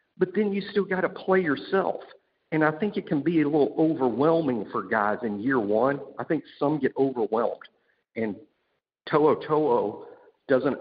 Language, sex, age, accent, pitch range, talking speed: English, male, 50-69, American, 125-190 Hz, 170 wpm